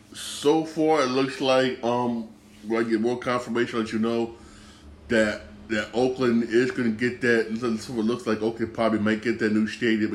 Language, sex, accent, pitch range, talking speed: English, male, American, 105-125 Hz, 200 wpm